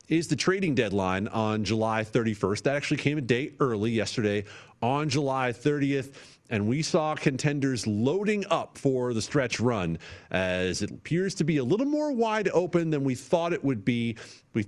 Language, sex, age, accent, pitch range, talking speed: English, male, 40-59, American, 110-155 Hz, 180 wpm